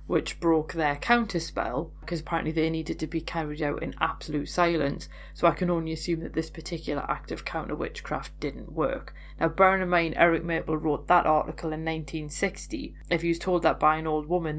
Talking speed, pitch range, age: 200 wpm, 150-175 Hz, 30-49